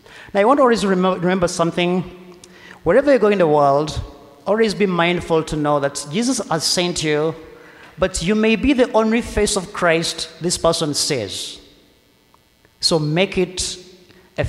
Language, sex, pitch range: English, male, 150-195 Hz